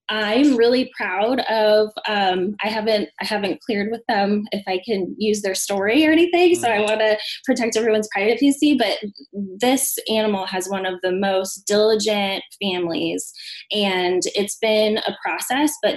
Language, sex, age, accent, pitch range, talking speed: English, female, 10-29, American, 190-225 Hz, 160 wpm